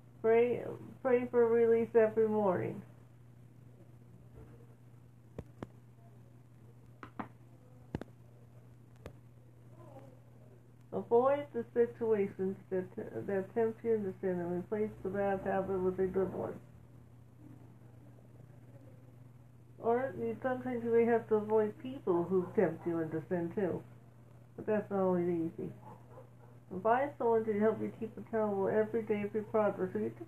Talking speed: 115 wpm